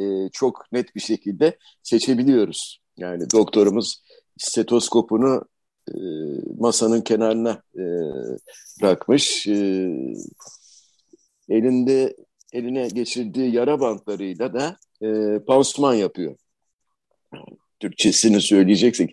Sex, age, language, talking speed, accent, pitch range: male, 60-79, Turkish, 65 wpm, native, 110-165 Hz